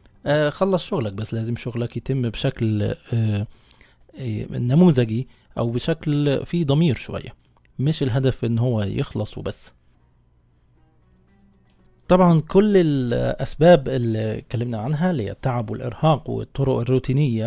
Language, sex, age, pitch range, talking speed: Arabic, male, 20-39, 115-155 Hz, 105 wpm